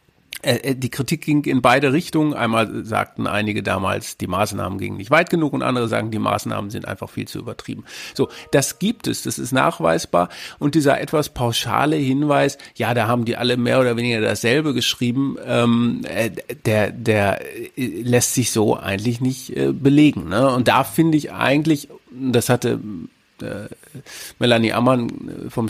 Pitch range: 115-135 Hz